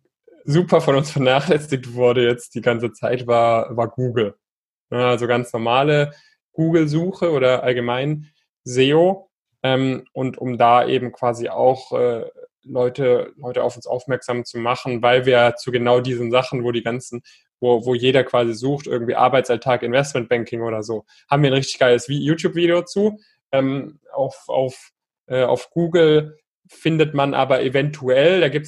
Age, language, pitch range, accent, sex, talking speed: 10-29, German, 125-150 Hz, German, male, 155 wpm